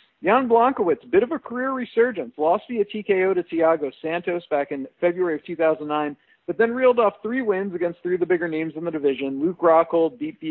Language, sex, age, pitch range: English, male, 50-69, 150-195 Hz